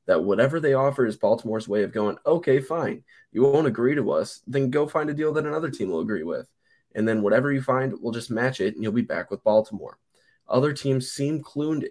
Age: 10-29